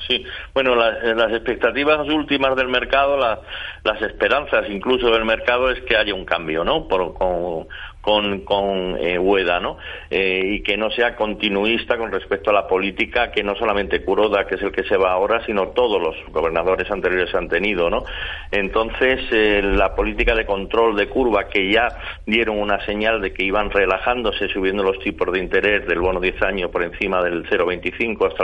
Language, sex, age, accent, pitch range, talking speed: Spanish, male, 50-69, Spanish, 95-120 Hz, 180 wpm